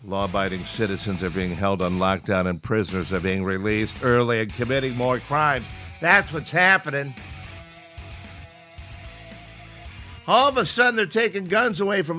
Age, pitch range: 60-79, 110-145 Hz